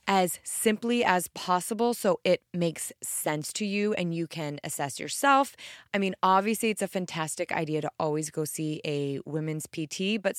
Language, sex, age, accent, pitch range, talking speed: English, female, 20-39, American, 155-205 Hz, 175 wpm